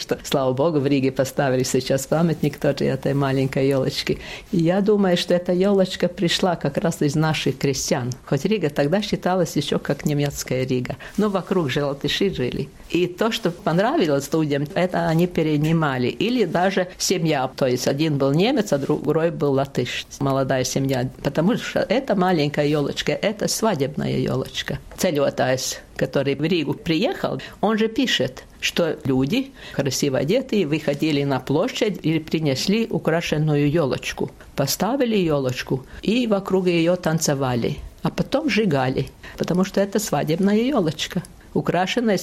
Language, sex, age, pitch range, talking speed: Russian, female, 50-69, 140-190 Hz, 140 wpm